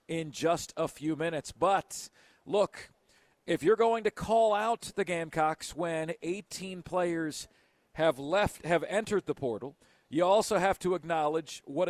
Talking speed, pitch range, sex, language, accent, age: 150 wpm, 160-195 Hz, male, English, American, 40-59